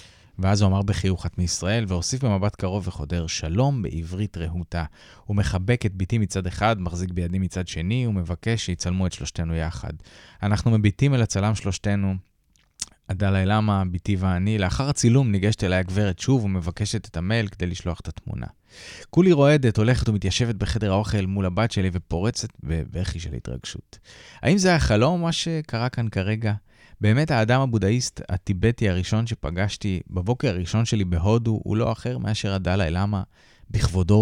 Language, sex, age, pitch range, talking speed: Hebrew, male, 20-39, 90-115 Hz, 150 wpm